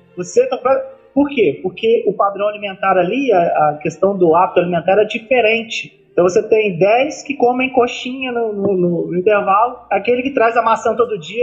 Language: Portuguese